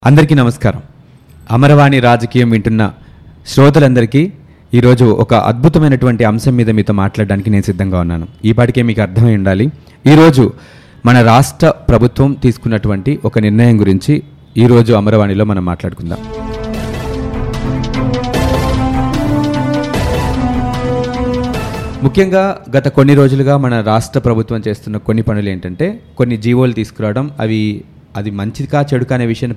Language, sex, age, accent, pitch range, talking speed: Telugu, male, 30-49, native, 110-135 Hz, 105 wpm